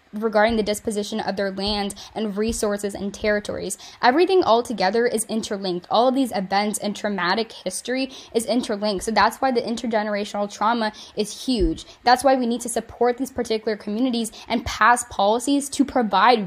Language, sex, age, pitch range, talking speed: English, female, 10-29, 205-250 Hz, 170 wpm